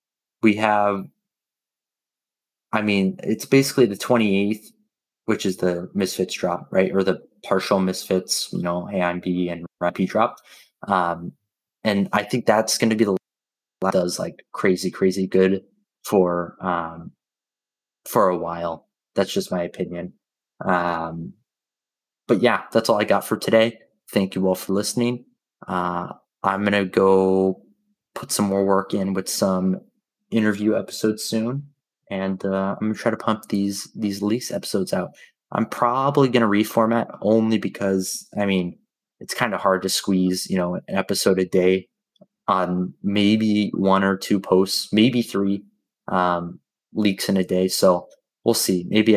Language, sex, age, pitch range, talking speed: English, male, 20-39, 95-110 Hz, 160 wpm